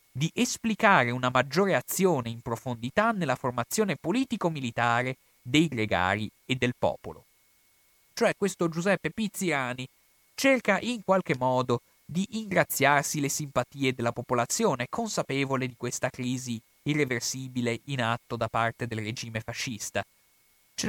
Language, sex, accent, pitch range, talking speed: Italian, male, native, 125-185 Hz, 120 wpm